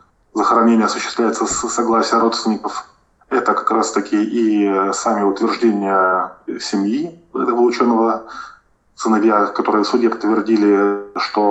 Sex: male